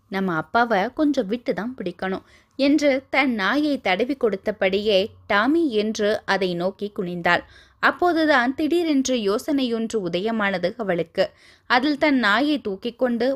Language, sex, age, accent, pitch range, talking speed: Tamil, female, 20-39, native, 195-270 Hz, 110 wpm